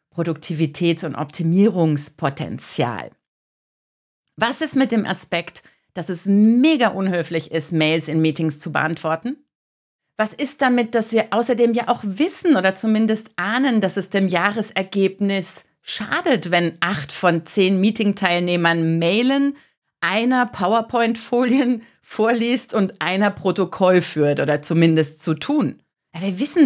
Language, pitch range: German, 170-235 Hz